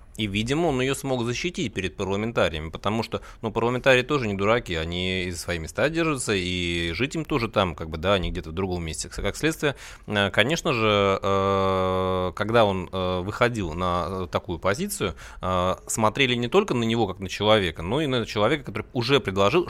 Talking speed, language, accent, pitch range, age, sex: 180 wpm, Russian, native, 95-120 Hz, 30-49, male